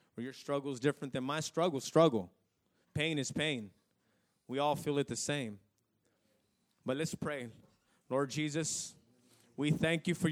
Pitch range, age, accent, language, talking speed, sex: 165-235 Hz, 30-49, American, English, 150 wpm, male